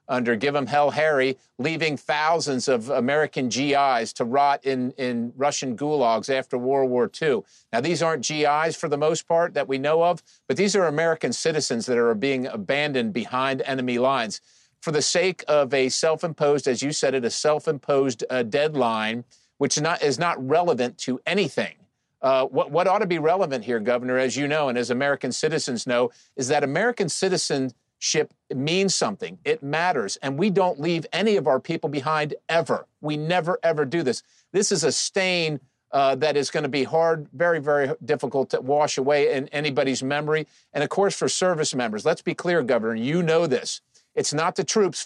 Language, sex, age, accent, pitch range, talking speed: English, male, 50-69, American, 130-165 Hz, 190 wpm